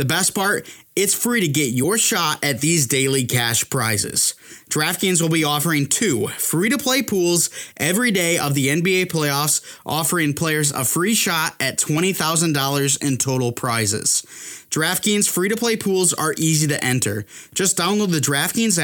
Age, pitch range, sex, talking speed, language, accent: 20-39, 135-180 Hz, male, 165 wpm, English, American